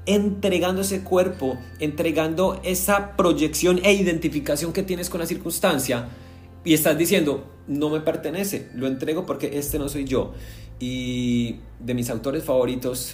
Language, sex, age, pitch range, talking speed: Spanish, male, 30-49, 100-135 Hz, 140 wpm